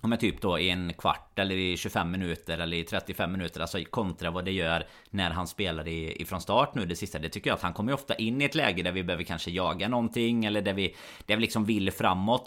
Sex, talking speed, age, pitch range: male, 255 wpm, 30-49, 90-110 Hz